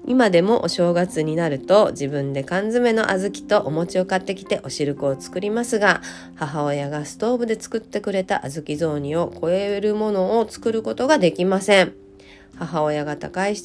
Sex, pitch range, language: female, 140-215 Hz, Japanese